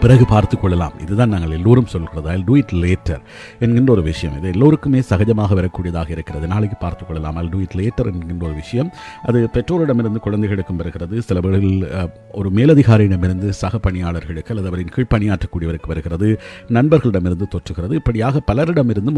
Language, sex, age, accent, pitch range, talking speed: Tamil, male, 50-69, native, 90-120 Hz, 130 wpm